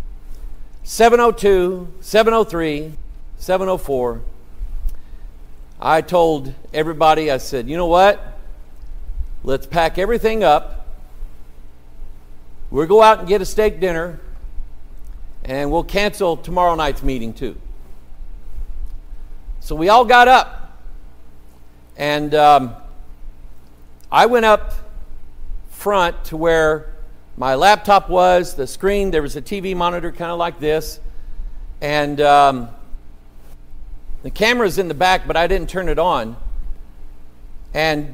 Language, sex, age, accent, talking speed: English, male, 50-69, American, 110 wpm